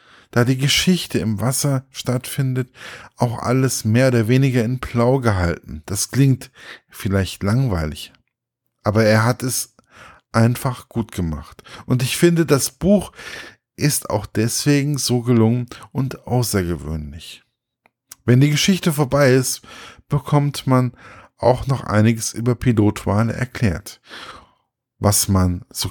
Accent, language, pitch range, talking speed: German, German, 100-130 Hz, 125 wpm